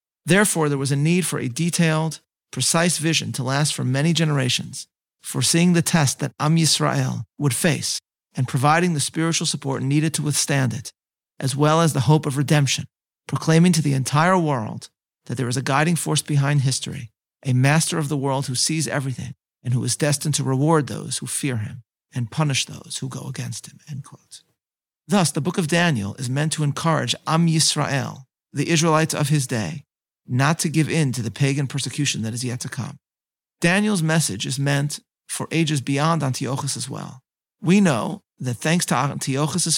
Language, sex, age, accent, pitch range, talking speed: English, male, 40-59, American, 135-160 Hz, 185 wpm